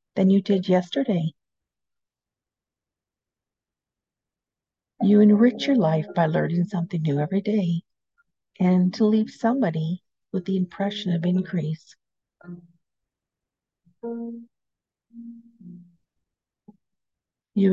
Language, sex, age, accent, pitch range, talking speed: English, female, 50-69, American, 155-200 Hz, 80 wpm